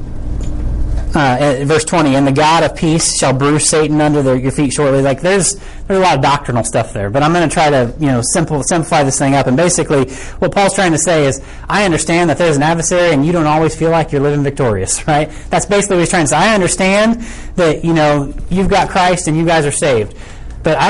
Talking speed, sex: 235 wpm, male